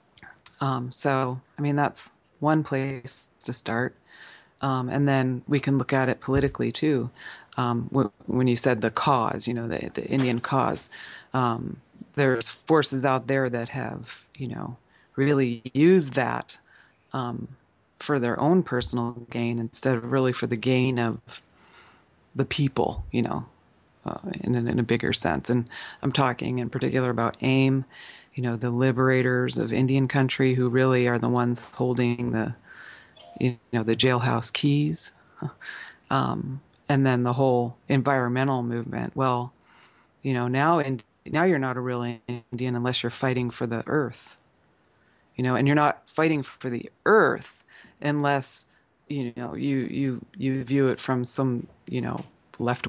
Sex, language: female, English